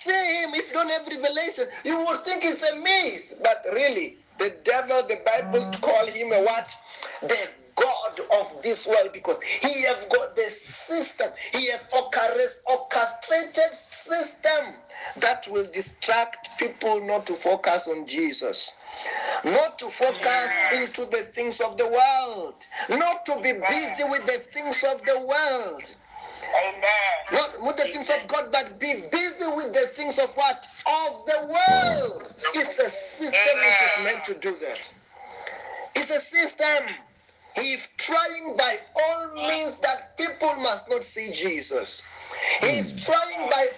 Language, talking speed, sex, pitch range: English, 150 wpm, male, 255-340 Hz